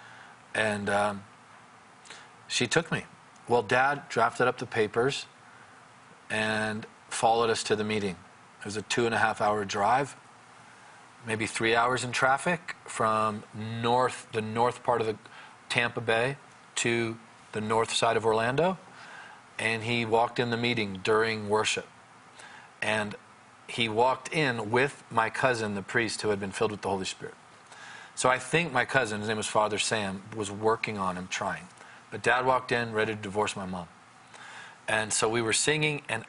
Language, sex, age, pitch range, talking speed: English, male, 40-59, 105-120 Hz, 160 wpm